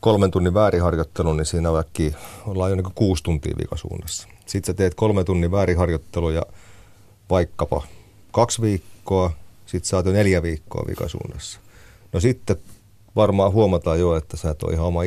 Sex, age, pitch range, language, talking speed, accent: male, 30-49, 85-100 Hz, Finnish, 150 wpm, native